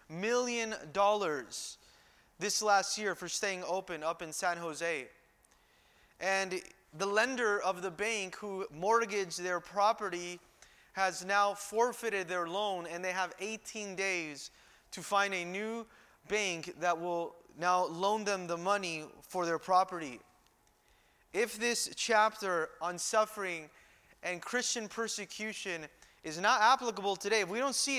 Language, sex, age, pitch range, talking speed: English, male, 20-39, 180-220 Hz, 135 wpm